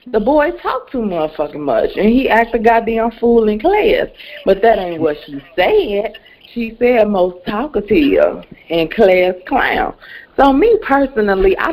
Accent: American